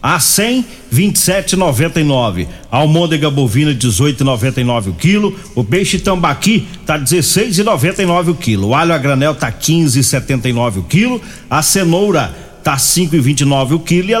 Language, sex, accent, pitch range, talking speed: Portuguese, male, Brazilian, 135-175 Hz, 130 wpm